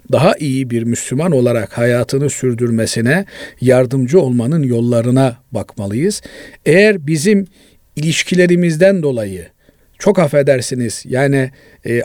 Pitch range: 125-180 Hz